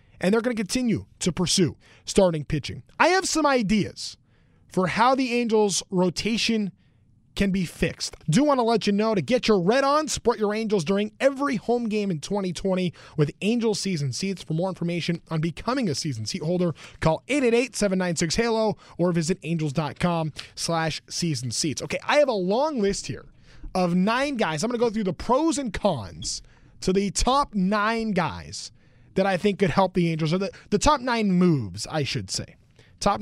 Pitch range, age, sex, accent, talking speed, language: 170-220 Hz, 30-49, male, American, 185 wpm, English